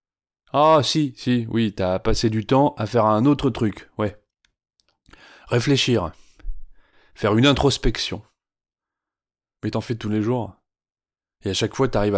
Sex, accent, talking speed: male, French, 145 wpm